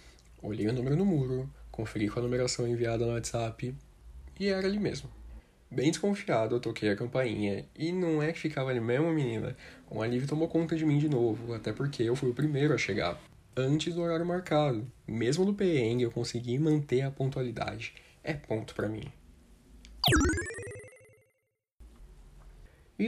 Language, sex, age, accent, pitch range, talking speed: Portuguese, male, 10-29, Brazilian, 110-150 Hz, 165 wpm